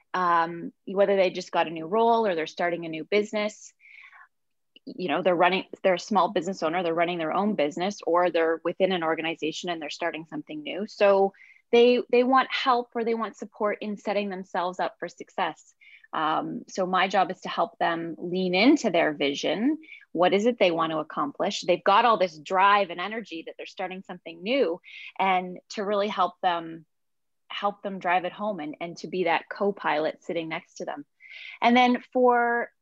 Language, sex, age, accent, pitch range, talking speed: English, female, 20-39, American, 170-220 Hz, 195 wpm